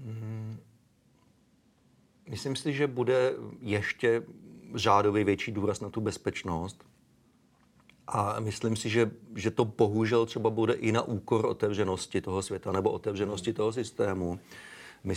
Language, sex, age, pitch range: Czech, male, 40-59, 100-115 Hz